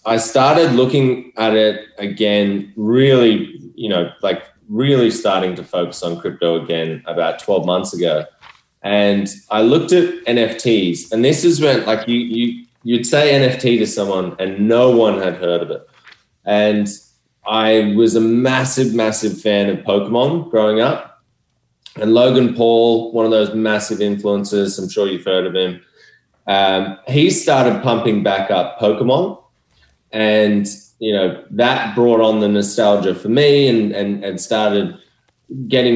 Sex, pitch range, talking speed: male, 100-120 Hz, 155 wpm